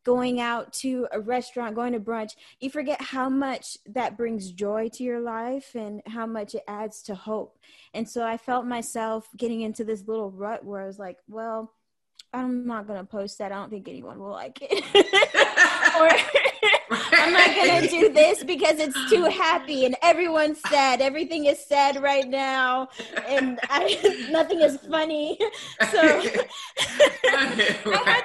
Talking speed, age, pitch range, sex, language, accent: 170 wpm, 10-29, 215-280 Hz, female, English, American